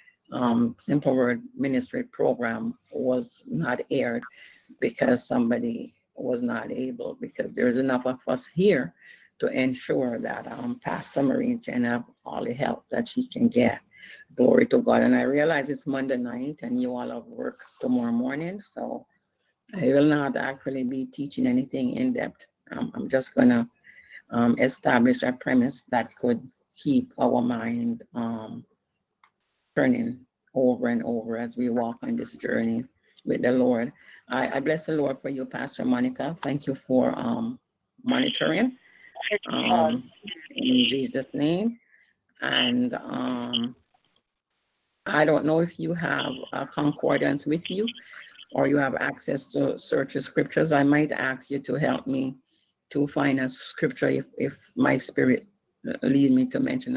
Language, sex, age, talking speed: English, female, 60-79, 150 wpm